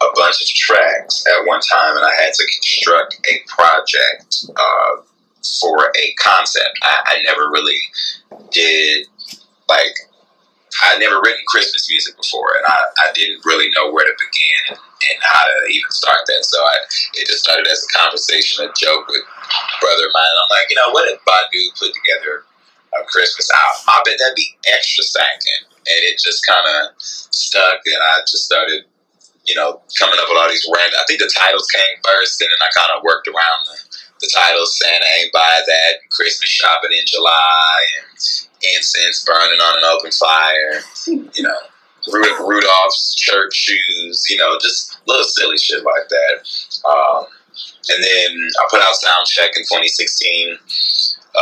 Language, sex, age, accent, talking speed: English, male, 30-49, American, 175 wpm